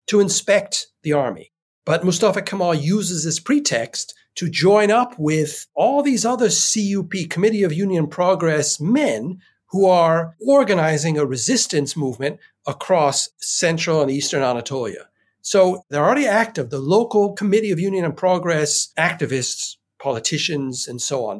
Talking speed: 140 wpm